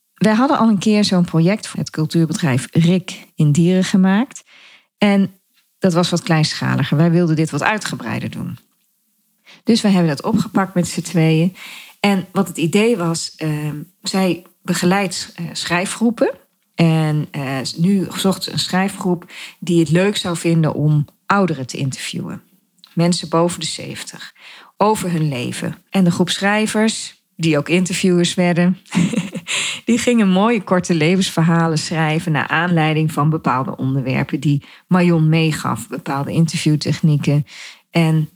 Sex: female